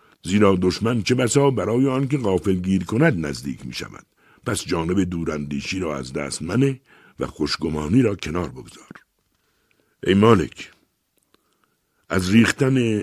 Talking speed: 125 wpm